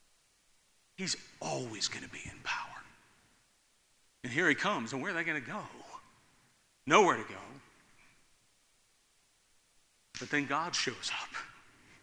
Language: English